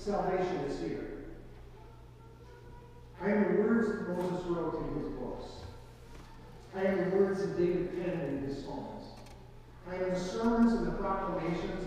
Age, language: 50-69, English